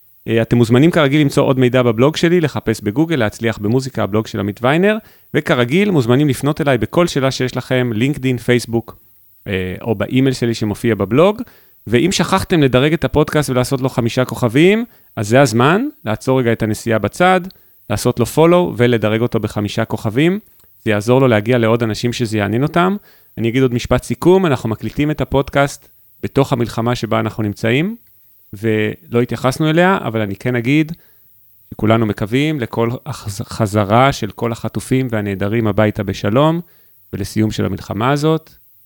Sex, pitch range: male, 105-135 Hz